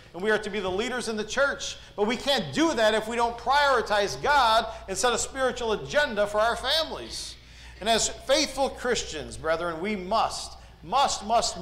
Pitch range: 185-235 Hz